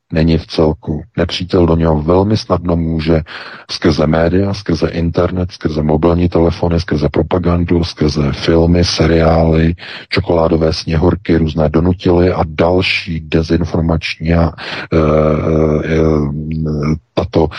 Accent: native